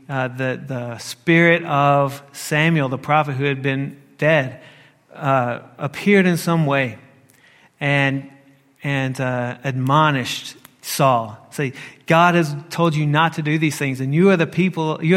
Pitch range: 135-165 Hz